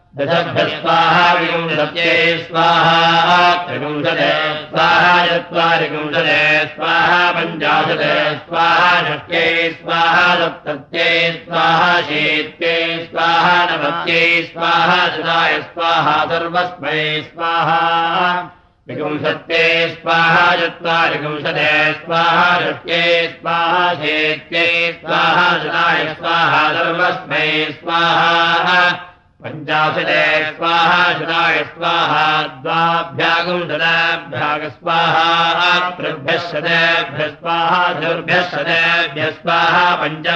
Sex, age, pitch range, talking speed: male, 60-79, 155-170 Hz, 50 wpm